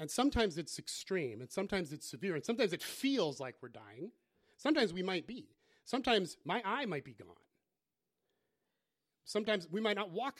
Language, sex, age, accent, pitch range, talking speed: English, male, 30-49, American, 150-215 Hz, 175 wpm